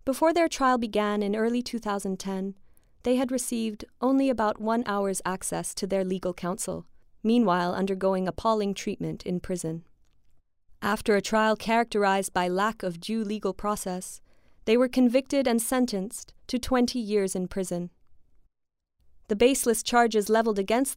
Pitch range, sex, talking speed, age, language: 190-240 Hz, female, 145 wpm, 20-39, English